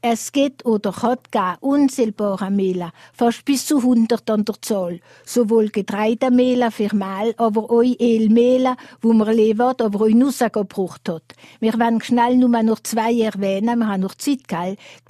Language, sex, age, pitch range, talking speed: French, female, 60-79, 215-240 Hz, 175 wpm